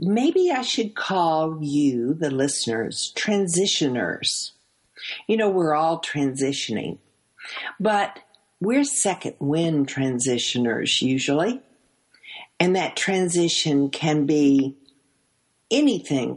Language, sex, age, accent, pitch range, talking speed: English, female, 50-69, American, 140-195 Hz, 90 wpm